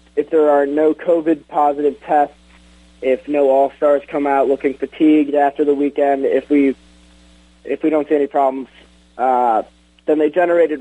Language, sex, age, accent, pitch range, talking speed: English, male, 20-39, American, 110-150 Hz, 150 wpm